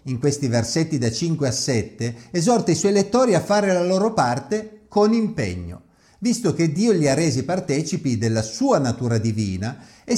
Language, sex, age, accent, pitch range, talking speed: Italian, male, 50-69, native, 115-190 Hz, 175 wpm